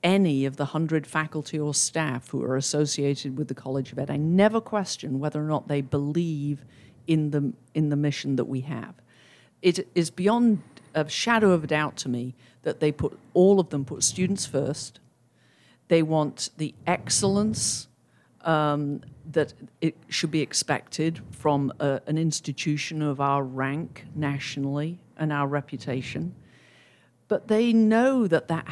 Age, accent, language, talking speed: 50-69, British, English, 160 wpm